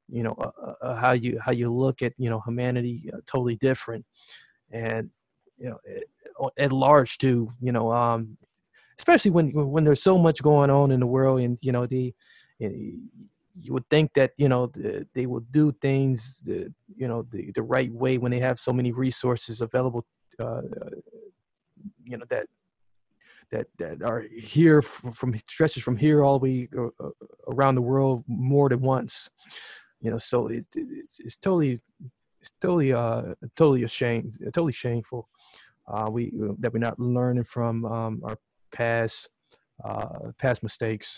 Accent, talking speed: American, 170 wpm